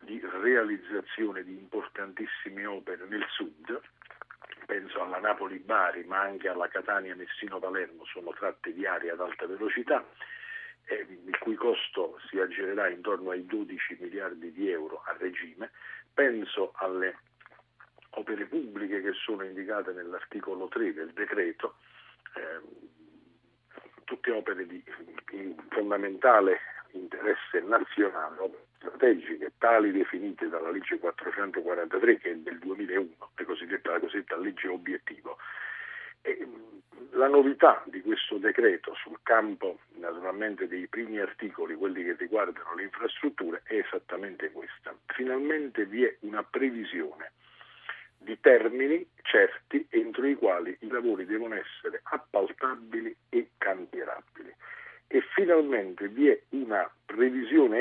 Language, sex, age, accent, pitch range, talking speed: Italian, male, 50-69, native, 330-440 Hz, 115 wpm